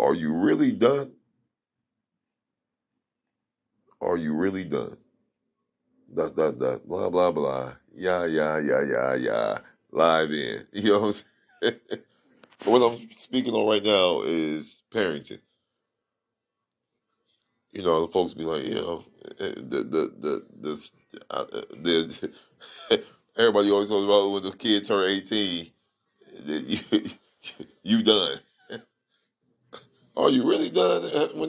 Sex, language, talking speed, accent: male, English, 120 wpm, American